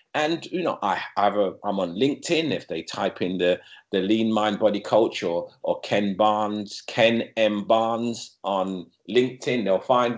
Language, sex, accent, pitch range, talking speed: English, male, British, 100-135 Hz, 175 wpm